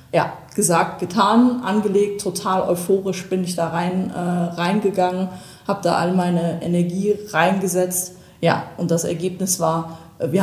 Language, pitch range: German, 160-180 Hz